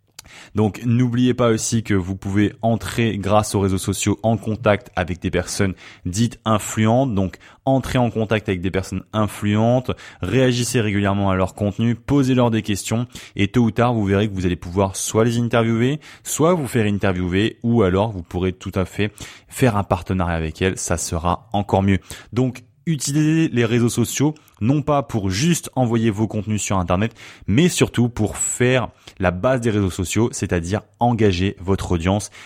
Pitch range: 100-125 Hz